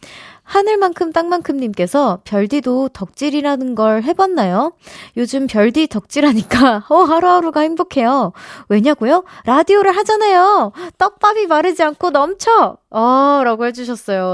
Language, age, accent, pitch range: Korean, 20-39, native, 200-300 Hz